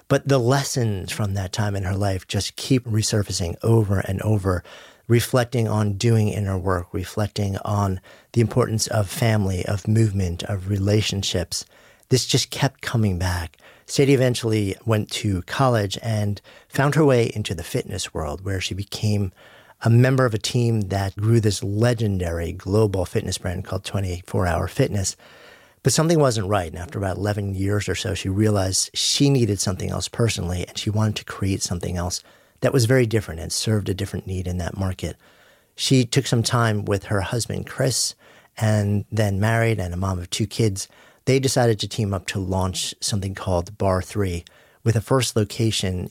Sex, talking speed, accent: male, 175 wpm, American